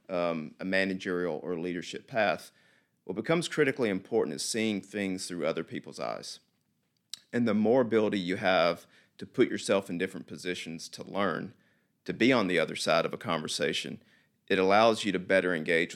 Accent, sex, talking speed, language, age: American, male, 175 wpm, English, 40-59